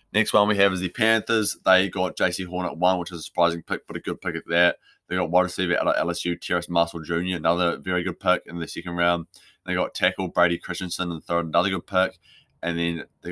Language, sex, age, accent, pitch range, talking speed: English, male, 20-39, Australian, 85-90 Hz, 250 wpm